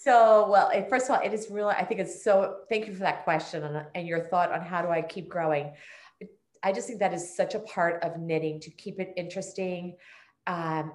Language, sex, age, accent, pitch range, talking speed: English, female, 30-49, American, 160-205 Hz, 225 wpm